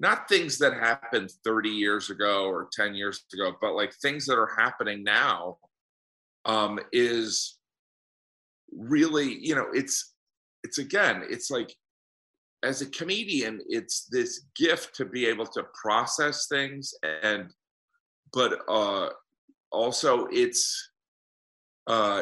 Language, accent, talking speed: English, American, 125 wpm